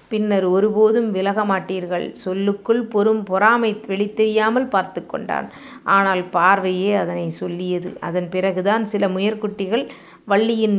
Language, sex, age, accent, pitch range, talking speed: Tamil, female, 30-49, native, 190-220 Hz, 95 wpm